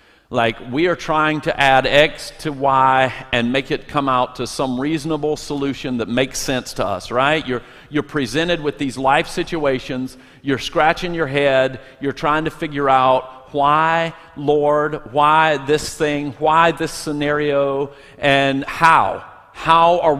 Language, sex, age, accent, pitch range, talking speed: English, male, 50-69, American, 135-160 Hz, 155 wpm